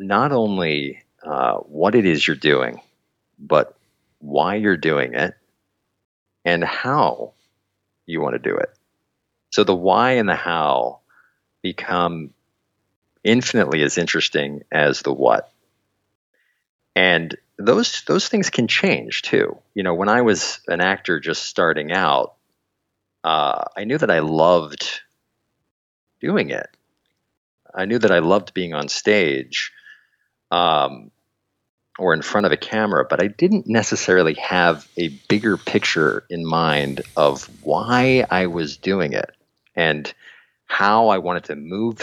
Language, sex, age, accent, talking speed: English, male, 40-59, American, 135 wpm